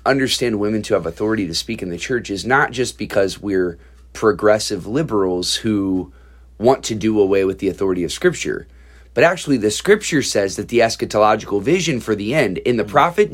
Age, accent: 30-49, American